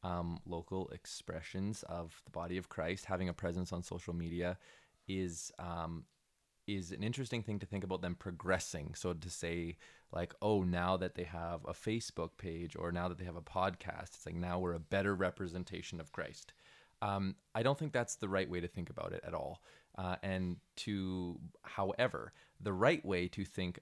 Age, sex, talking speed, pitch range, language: 20-39, male, 190 wpm, 85-95 Hz, English